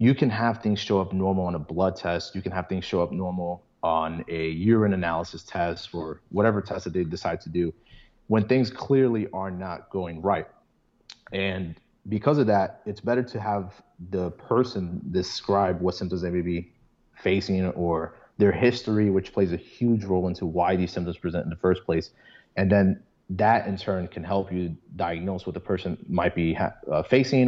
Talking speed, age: 190 wpm, 30-49